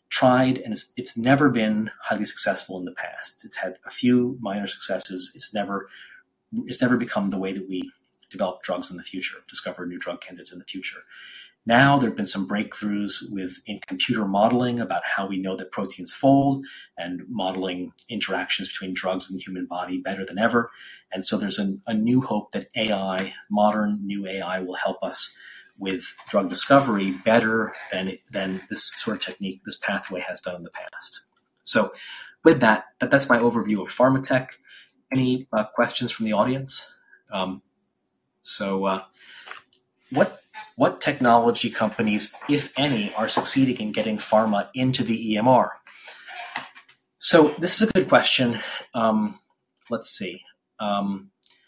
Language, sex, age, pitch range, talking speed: English, male, 30-49, 95-125 Hz, 165 wpm